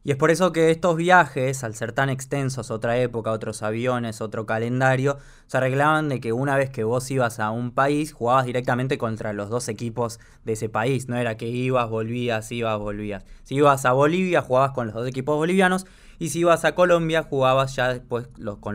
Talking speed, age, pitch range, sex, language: 205 wpm, 20-39, 110-145 Hz, male, Spanish